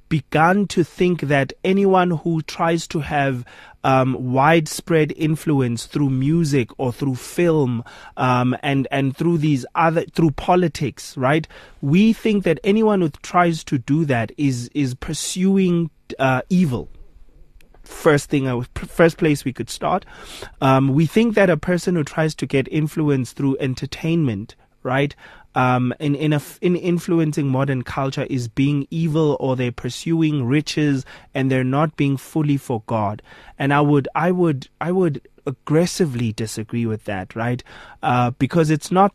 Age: 30-49